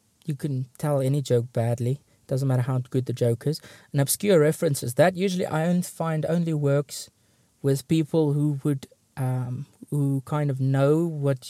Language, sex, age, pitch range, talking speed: English, male, 20-39, 125-155 Hz, 175 wpm